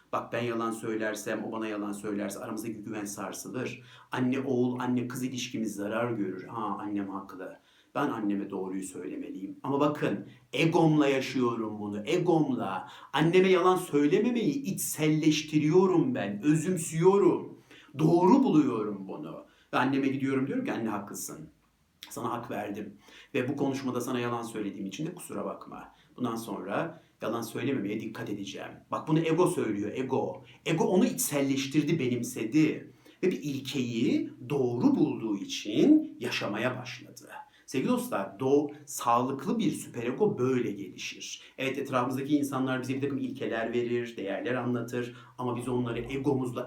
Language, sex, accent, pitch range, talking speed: Turkish, male, native, 115-160 Hz, 135 wpm